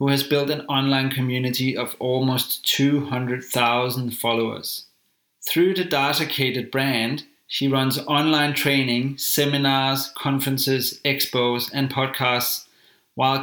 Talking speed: 105 wpm